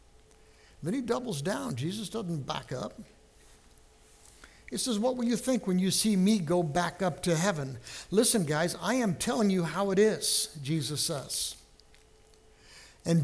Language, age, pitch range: English, 60-79, 135-195 Hz